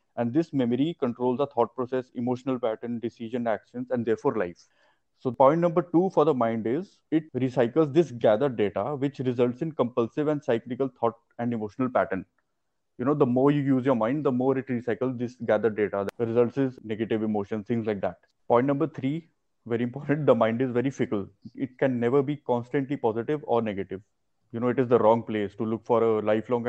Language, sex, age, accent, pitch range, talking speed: English, male, 20-39, Indian, 115-140 Hz, 200 wpm